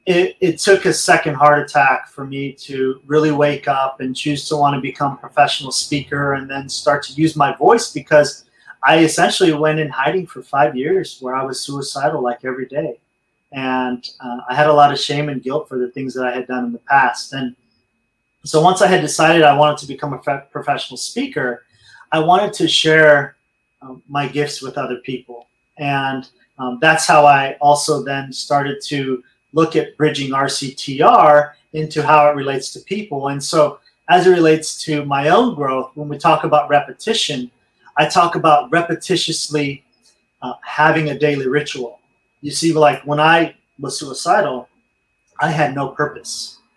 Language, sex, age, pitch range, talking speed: English, male, 30-49, 135-155 Hz, 180 wpm